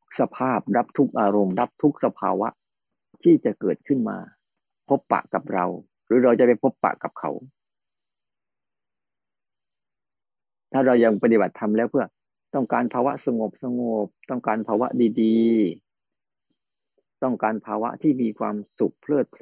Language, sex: Thai, male